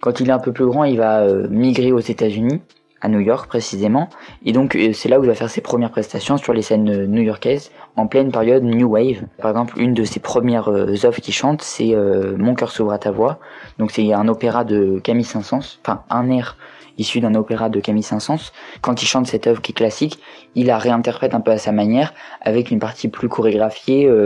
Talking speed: 225 wpm